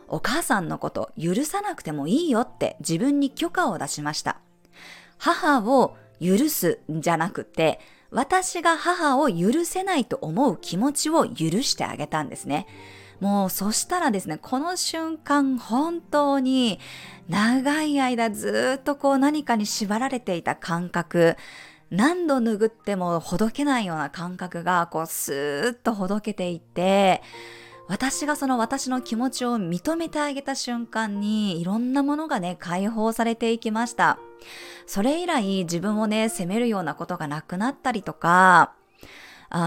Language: Japanese